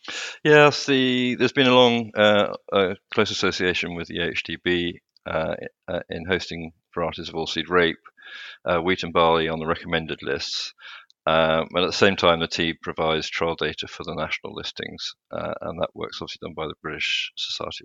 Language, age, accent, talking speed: English, 40-59, British, 180 wpm